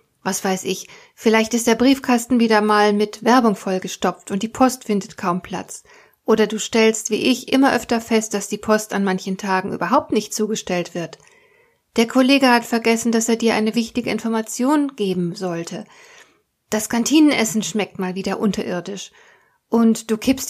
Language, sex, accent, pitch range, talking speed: German, female, German, 200-245 Hz, 165 wpm